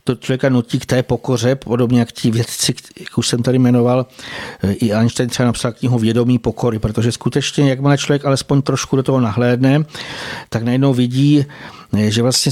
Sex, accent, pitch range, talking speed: male, native, 125-145 Hz, 175 wpm